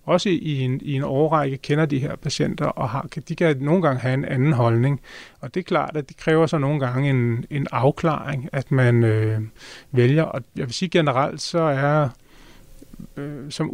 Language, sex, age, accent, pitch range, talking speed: Danish, male, 30-49, native, 135-160 Hz, 200 wpm